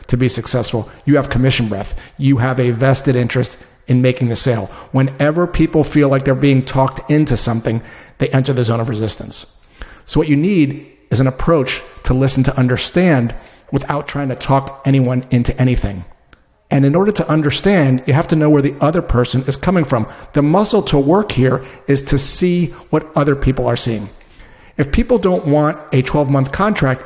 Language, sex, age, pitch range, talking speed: English, male, 40-59, 130-155 Hz, 190 wpm